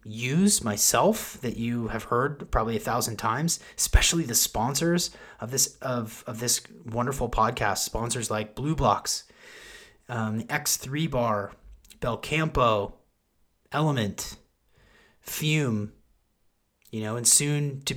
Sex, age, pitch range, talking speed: male, 30-49, 110-150 Hz, 120 wpm